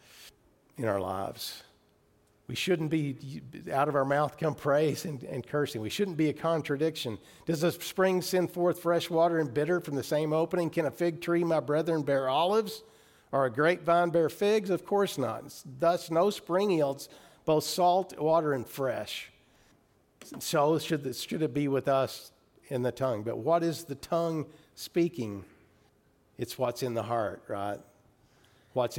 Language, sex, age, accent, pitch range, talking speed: English, male, 50-69, American, 115-155 Hz, 170 wpm